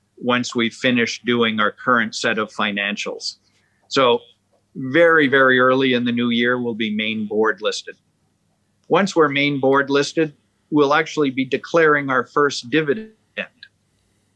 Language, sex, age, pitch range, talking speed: English, male, 50-69, 110-140 Hz, 140 wpm